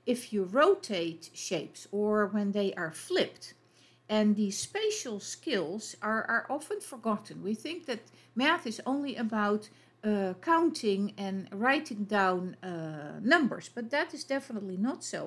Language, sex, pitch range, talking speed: English, female, 200-275 Hz, 145 wpm